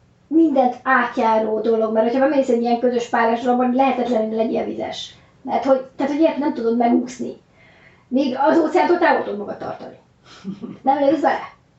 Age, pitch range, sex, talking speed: 30-49, 230-270 Hz, female, 165 wpm